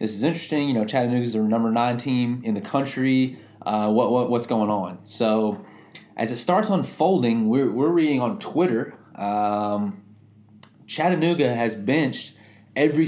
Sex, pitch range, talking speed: male, 110-135 Hz, 160 wpm